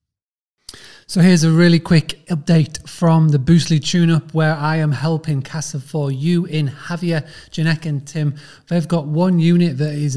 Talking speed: 165 wpm